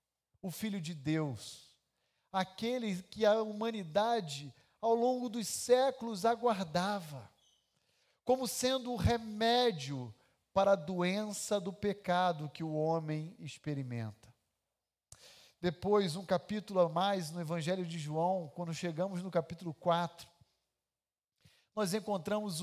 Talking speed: 110 wpm